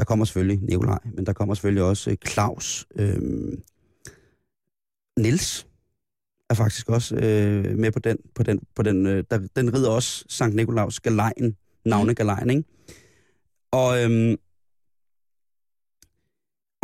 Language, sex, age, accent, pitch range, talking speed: Danish, male, 30-49, native, 100-125 Hz, 120 wpm